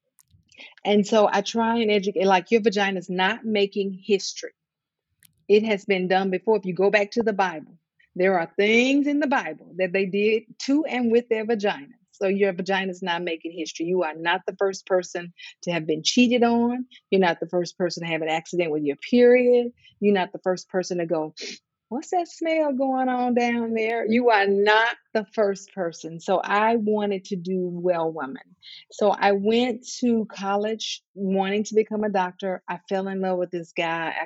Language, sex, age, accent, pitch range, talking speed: English, female, 40-59, American, 180-220 Hz, 200 wpm